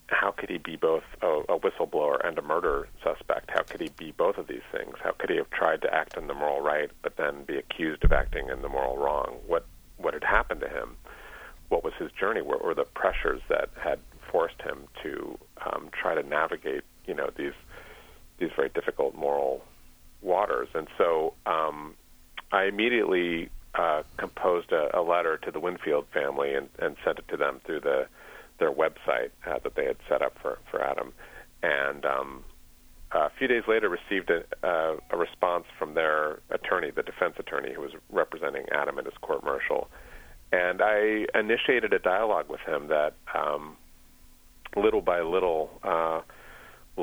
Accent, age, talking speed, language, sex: American, 40-59, 180 wpm, English, male